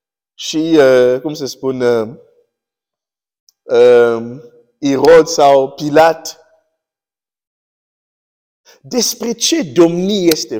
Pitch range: 145-220 Hz